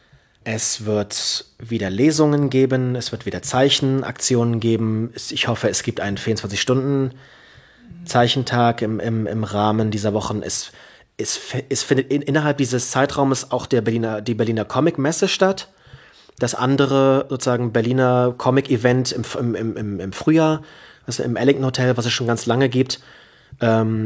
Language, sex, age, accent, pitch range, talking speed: German, male, 30-49, German, 110-135 Hz, 145 wpm